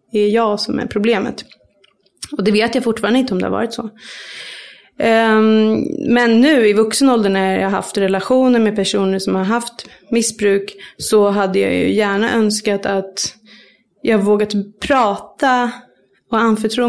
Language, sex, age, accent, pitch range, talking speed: English, female, 30-49, Swedish, 205-235 Hz, 165 wpm